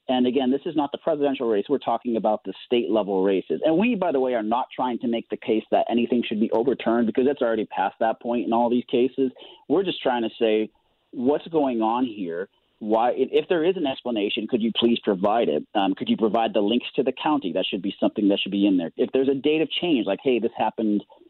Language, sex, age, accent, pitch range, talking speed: English, male, 30-49, American, 115-155 Hz, 255 wpm